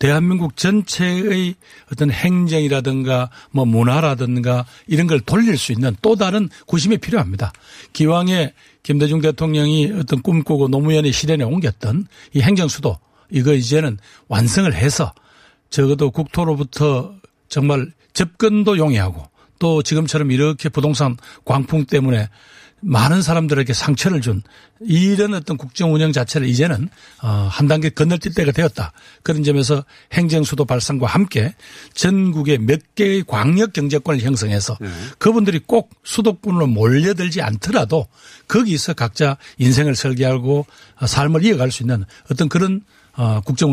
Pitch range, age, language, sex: 130-170 Hz, 60-79, Korean, male